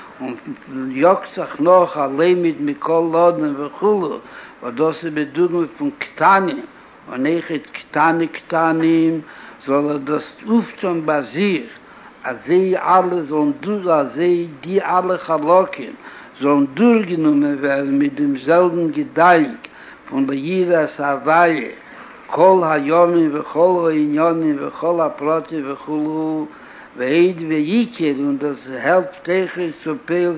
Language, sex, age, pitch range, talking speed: Hebrew, male, 60-79, 150-180 Hz, 85 wpm